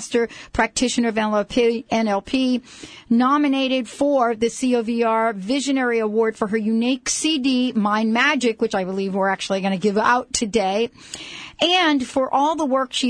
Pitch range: 210-250 Hz